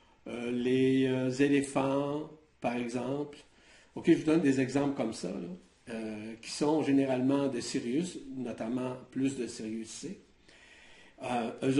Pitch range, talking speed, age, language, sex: 130-175 Hz, 140 wpm, 60-79, French, male